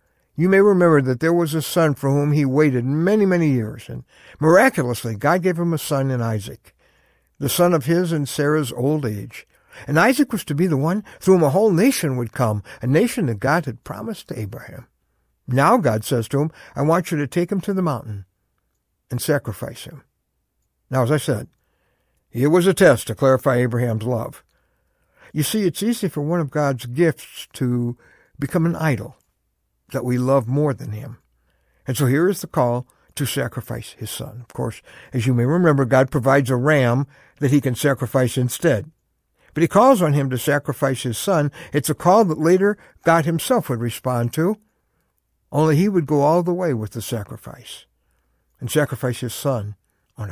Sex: male